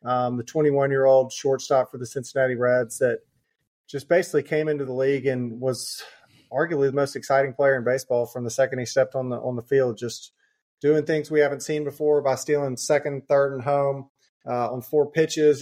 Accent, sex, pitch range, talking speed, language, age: American, male, 130-150 Hz, 195 wpm, English, 30-49